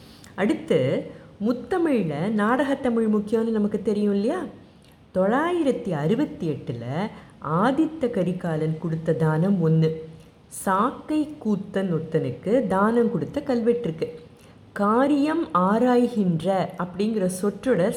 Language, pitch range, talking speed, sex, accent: Tamil, 160-240 Hz, 85 wpm, female, native